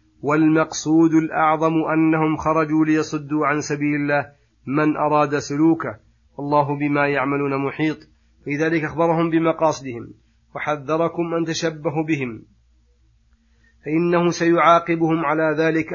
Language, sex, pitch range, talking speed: Arabic, male, 145-155 Hz, 100 wpm